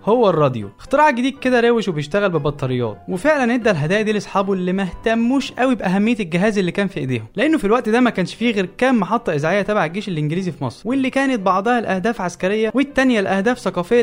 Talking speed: 200 wpm